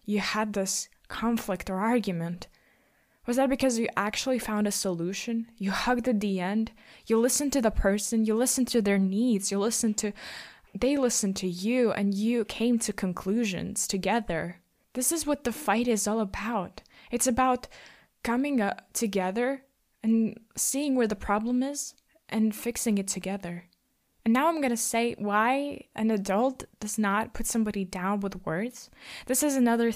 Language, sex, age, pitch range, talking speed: English, female, 20-39, 200-250 Hz, 165 wpm